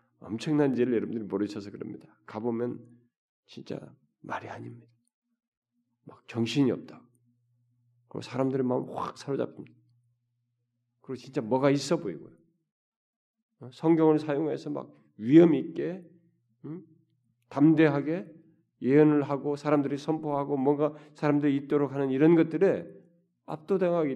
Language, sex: Korean, male